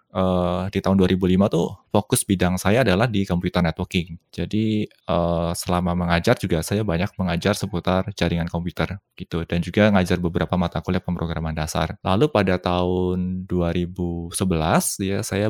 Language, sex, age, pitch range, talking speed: Indonesian, male, 20-39, 85-100 Hz, 145 wpm